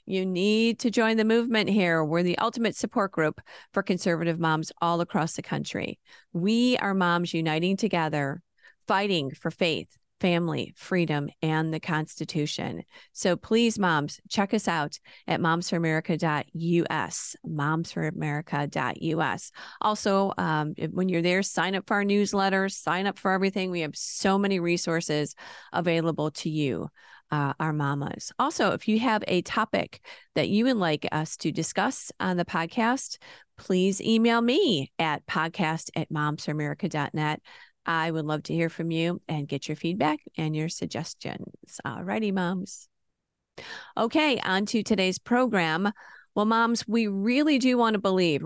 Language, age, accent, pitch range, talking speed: English, 40-59, American, 160-215 Hz, 145 wpm